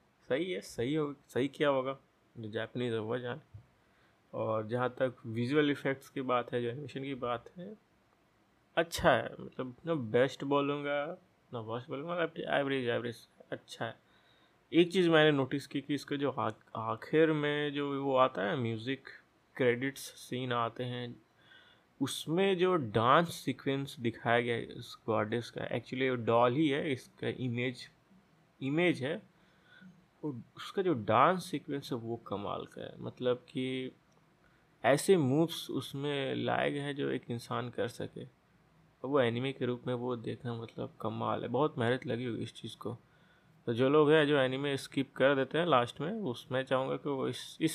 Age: 20-39